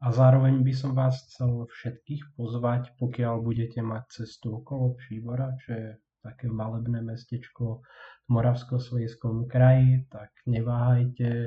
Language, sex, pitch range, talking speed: Slovak, male, 115-125 Hz, 125 wpm